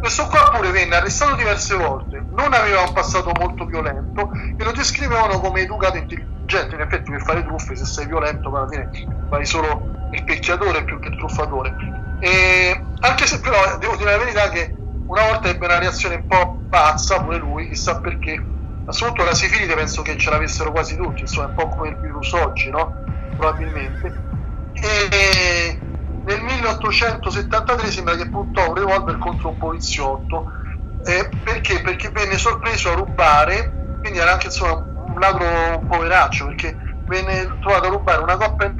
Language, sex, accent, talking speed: Italian, male, native, 170 wpm